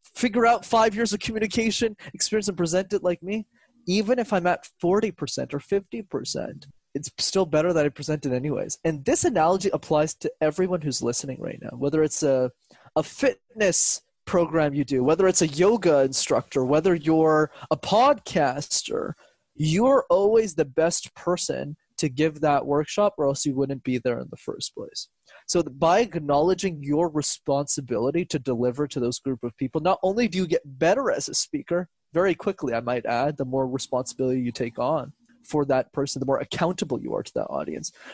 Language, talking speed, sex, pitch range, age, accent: English, 185 wpm, male, 140-195 Hz, 20-39, American